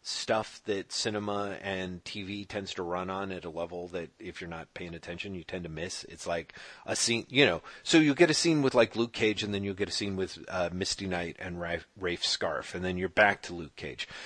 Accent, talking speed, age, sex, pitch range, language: American, 245 wpm, 40-59, male, 95-120 Hz, English